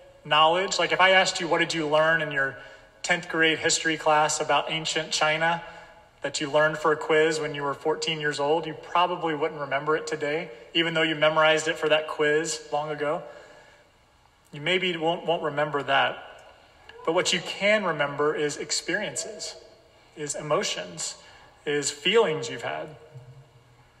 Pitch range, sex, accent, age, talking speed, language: 150-165 Hz, male, American, 30-49, 165 wpm, English